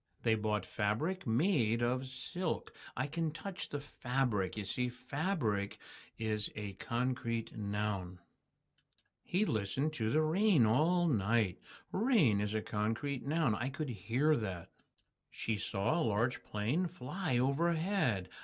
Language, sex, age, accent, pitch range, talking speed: English, male, 60-79, American, 110-155 Hz, 135 wpm